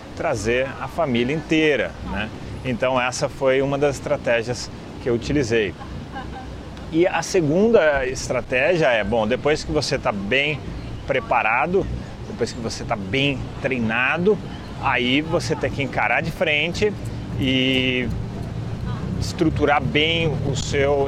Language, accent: Portuguese, Brazilian